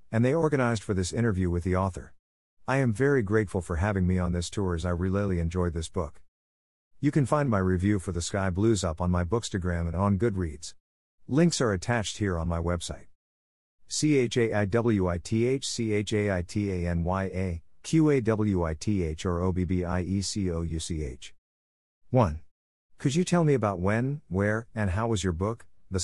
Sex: male